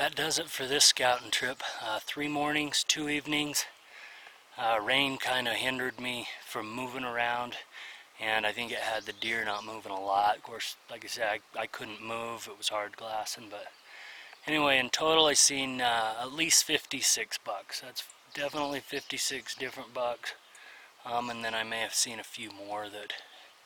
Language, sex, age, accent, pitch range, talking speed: English, male, 30-49, American, 115-140 Hz, 185 wpm